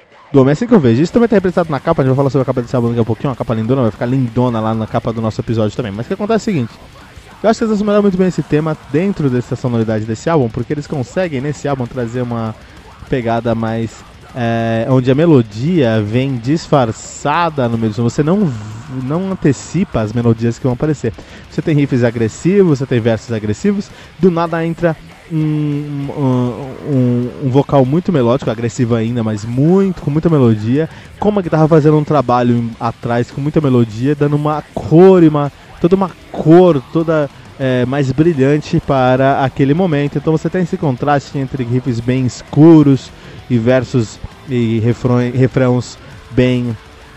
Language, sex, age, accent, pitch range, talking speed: Portuguese, male, 20-39, Brazilian, 120-155 Hz, 190 wpm